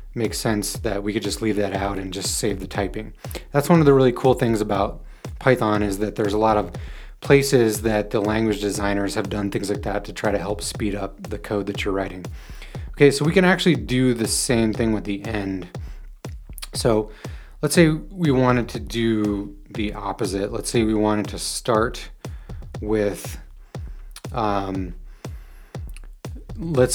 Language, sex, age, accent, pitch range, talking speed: English, male, 30-49, American, 100-125 Hz, 180 wpm